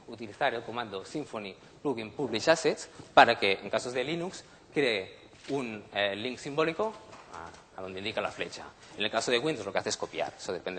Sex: male